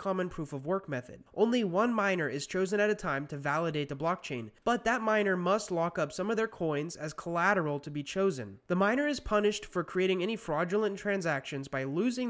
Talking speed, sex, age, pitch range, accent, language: 210 wpm, male, 20-39, 160-220 Hz, American, English